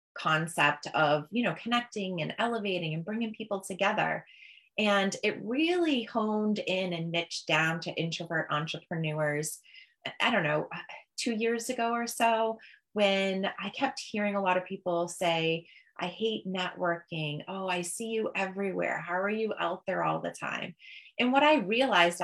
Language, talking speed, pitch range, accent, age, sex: English, 160 wpm, 175-230 Hz, American, 20-39, female